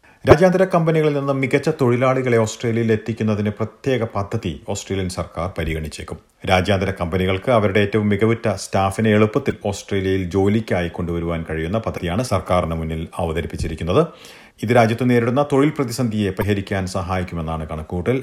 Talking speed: 115 wpm